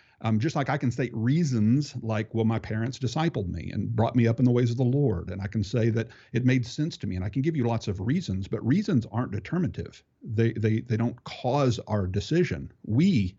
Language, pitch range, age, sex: English, 105-125 Hz, 50-69, male